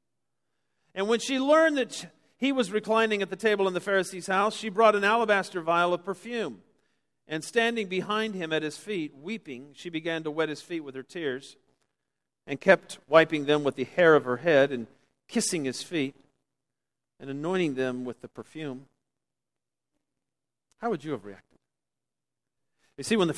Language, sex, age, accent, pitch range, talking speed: English, male, 50-69, American, 135-190 Hz, 175 wpm